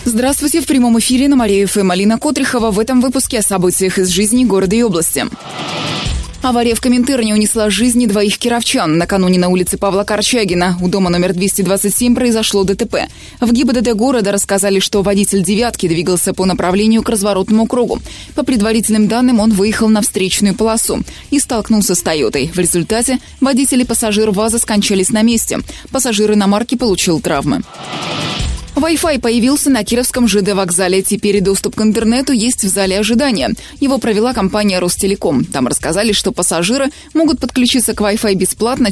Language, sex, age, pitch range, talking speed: Russian, female, 20-39, 195-250 Hz, 160 wpm